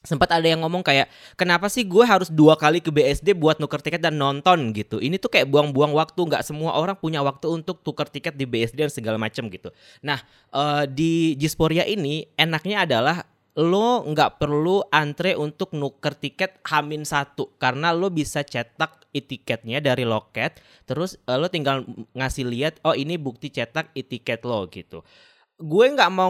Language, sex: Indonesian, male